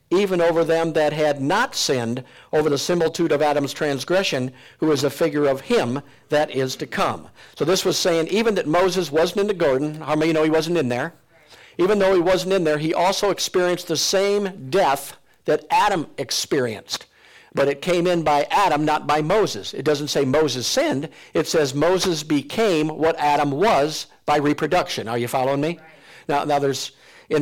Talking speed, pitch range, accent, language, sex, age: 195 wpm, 150-180 Hz, American, English, male, 50-69